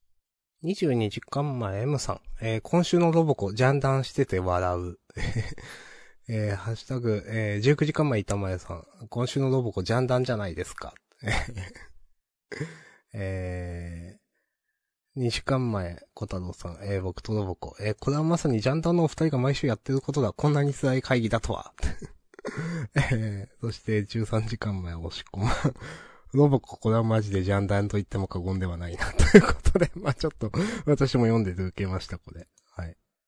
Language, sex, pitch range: Japanese, male, 95-140 Hz